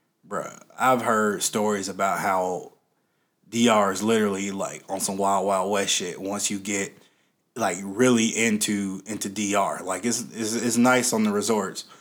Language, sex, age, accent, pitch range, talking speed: English, male, 20-39, American, 100-125 Hz, 160 wpm